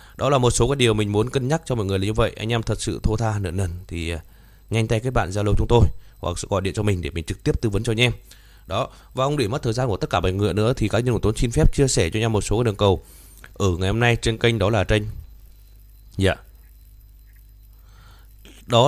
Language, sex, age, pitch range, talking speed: Vietnamese, male, 20-39, 100-125 Hz, 270 wpm